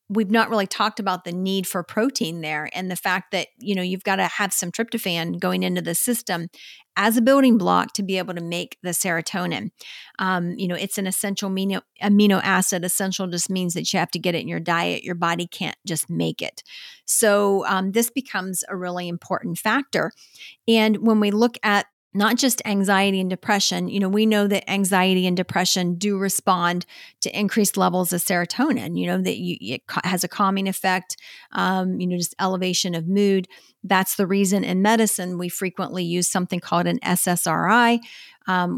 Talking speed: 195 wpm